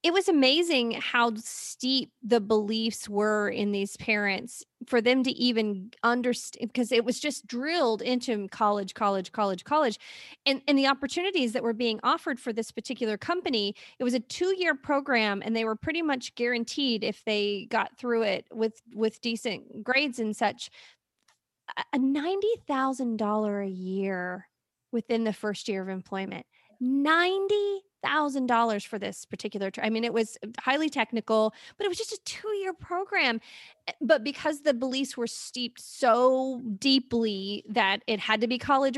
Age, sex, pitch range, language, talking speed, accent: 30-49, female, 215-270 Hz, English, 160 wpm, American